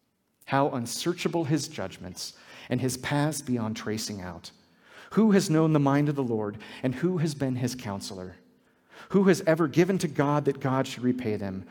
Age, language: 40-59, English